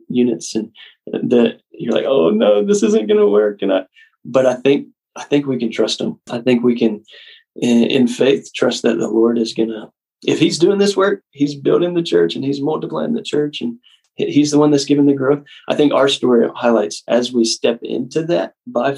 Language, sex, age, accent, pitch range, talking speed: English, male, 30-49, American, 110-140 Hz, 215 wpm